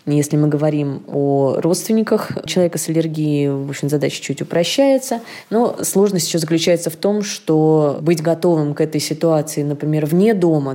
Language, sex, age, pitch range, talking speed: Russian, female, 20-39, 150-175 Hz, 155 wpm